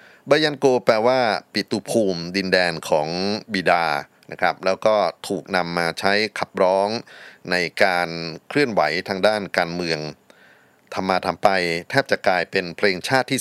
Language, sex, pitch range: Thai, male, 85-105 Hz